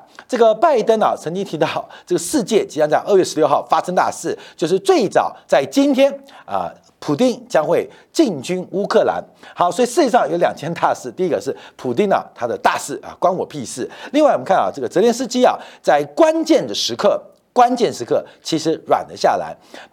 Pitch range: 195-295 Hz